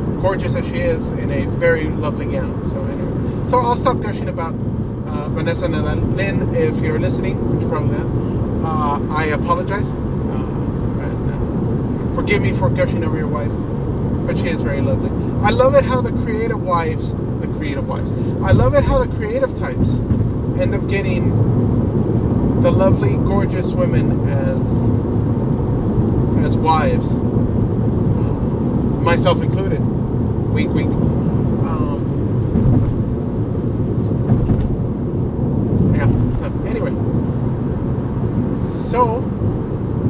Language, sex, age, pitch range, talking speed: English, male, 30-49, 115-125 Hz, 120 wpm